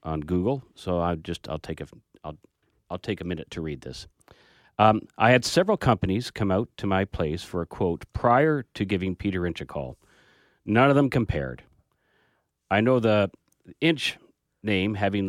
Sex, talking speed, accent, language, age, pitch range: male, 180 wpm, American, English, 40-59, 90-115 Hz